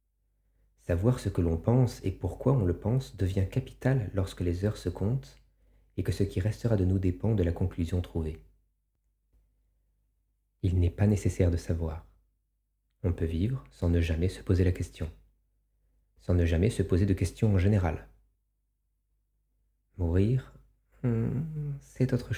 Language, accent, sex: French, French, male